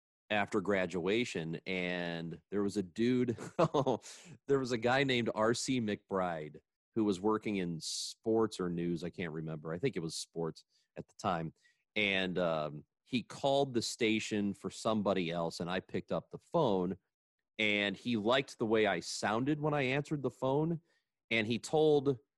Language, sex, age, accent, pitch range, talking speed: English, male, 30-49, American, 95-125 Hz, 165 wpm